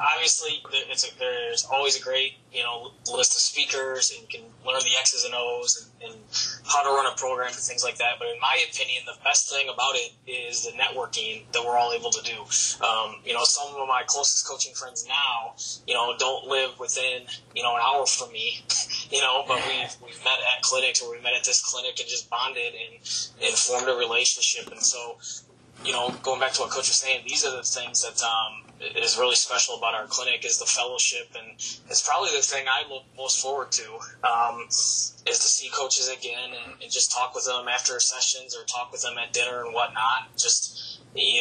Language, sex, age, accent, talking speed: English, male, 20-39, American, 225 wpm